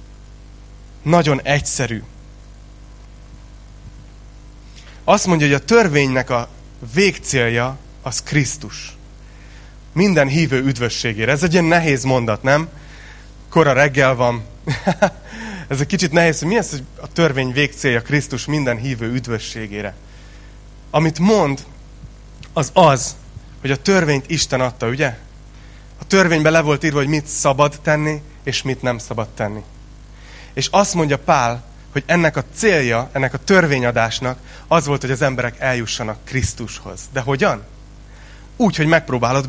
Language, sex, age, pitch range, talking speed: Hungarian, male, 30-49, 115-150 Hz, 130 wpm